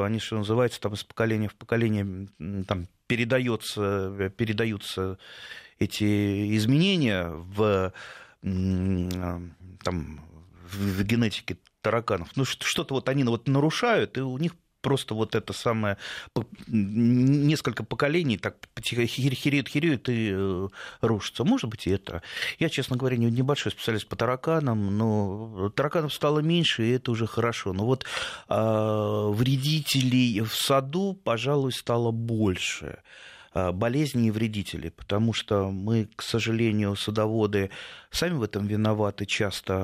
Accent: native